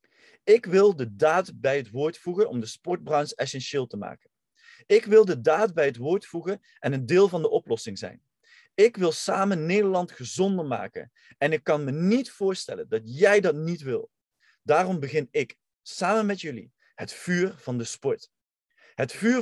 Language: Dutch